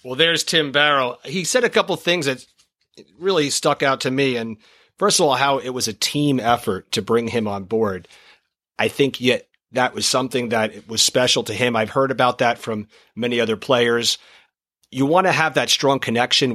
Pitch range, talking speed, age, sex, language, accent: 115-140 Hz, 210 wpm, 40-59, male, English, American